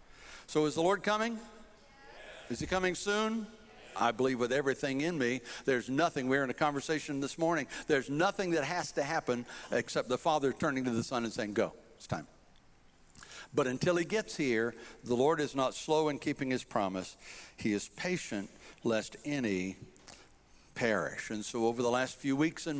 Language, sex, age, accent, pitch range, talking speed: English, male, 60-79, American, 130-175 Hz, 180 wpm